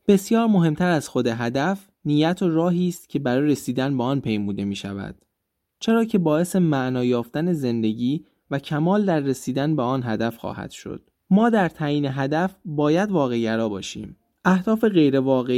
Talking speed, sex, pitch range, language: 160 wpm, male, 120-180 Hz, Persian